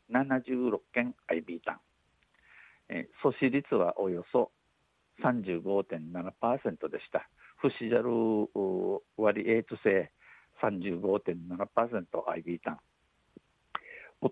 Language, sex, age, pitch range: Japanese, male, 60-79, 95-125 Hz